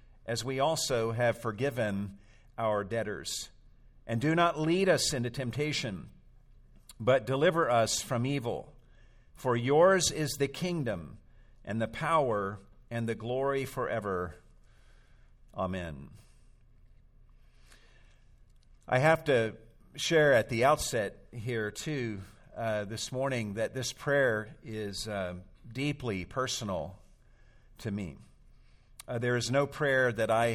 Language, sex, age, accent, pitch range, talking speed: English, male, 50-69, American, 105-130 Hz, 120 wpm